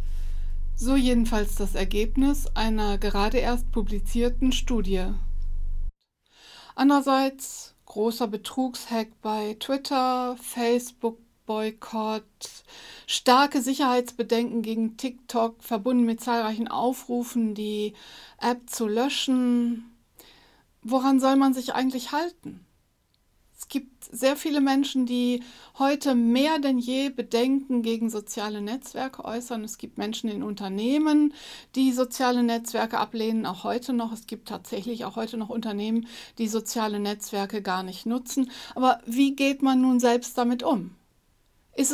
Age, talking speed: 60-79, 115 wpm